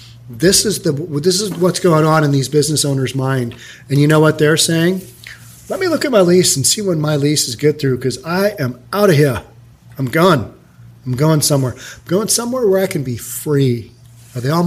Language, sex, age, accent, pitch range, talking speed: English, male, 40-59, American, 135-180 Hz, 225 wpm